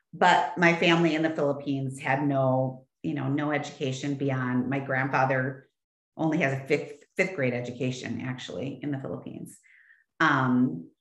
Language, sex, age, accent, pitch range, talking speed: English, female, 40-59, American, 150-195 Hz, 145 wpm